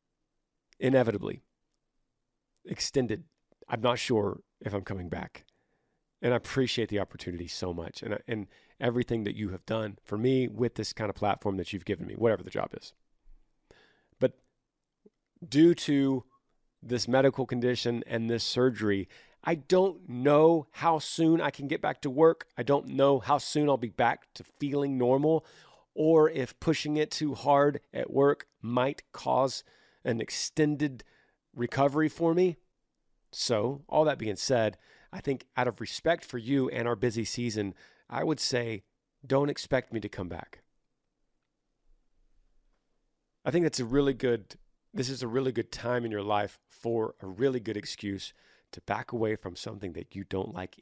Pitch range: 105-140 Hz